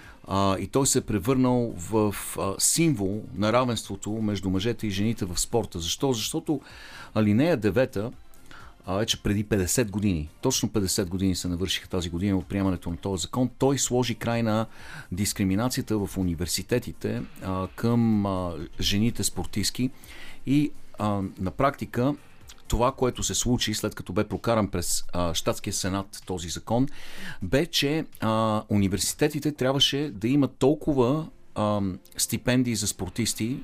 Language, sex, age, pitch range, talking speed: Bulgarian, male, 40-59, 95-125 Hz, 135 wpm